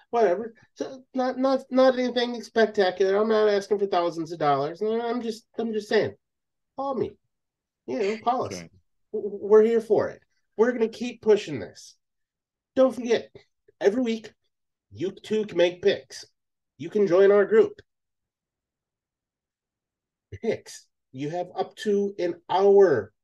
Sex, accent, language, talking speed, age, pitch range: male, American, English, 140 wpm, 30-49, 145-230 Hz